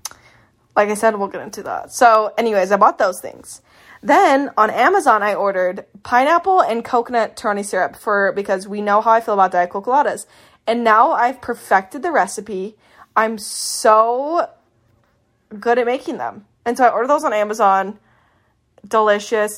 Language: English